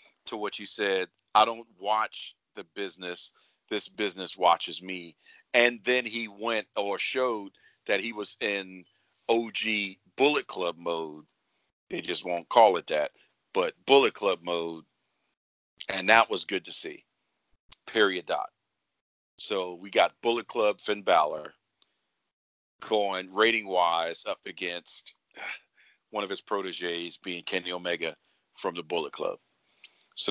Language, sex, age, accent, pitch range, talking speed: English, male, 40-59, American, 90-110 Hz, 135 wpm